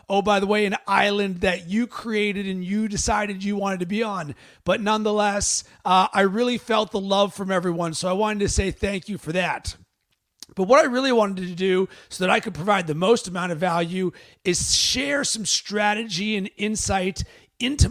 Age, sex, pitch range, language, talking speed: 30-49, male, 185-220 Hz, English, 200 wpm